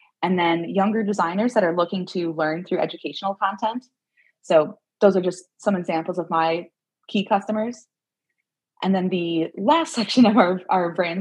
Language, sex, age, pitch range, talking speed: English, female, 20-39, 165-210 Hz, 165 wpm